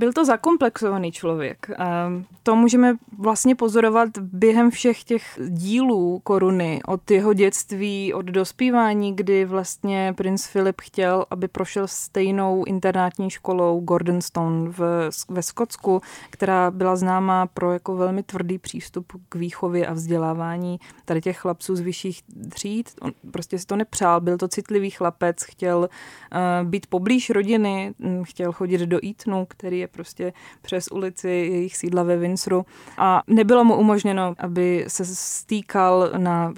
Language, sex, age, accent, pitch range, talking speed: Czech, female, 20-39, native, 180-205 Hz, 140 wpm